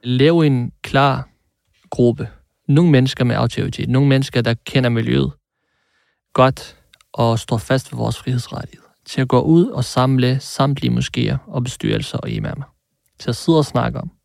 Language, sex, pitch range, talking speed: Danish, male, 120-150 Hz, 160 wpm